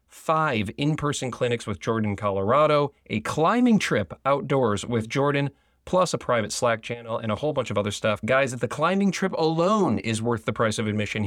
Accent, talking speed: American, 185 wpm